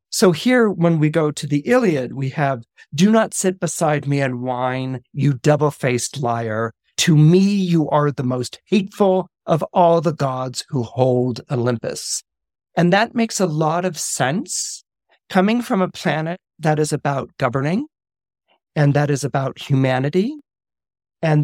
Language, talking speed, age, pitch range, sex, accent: English, 155 wpm, 40-59, 130-165 Hz, male, American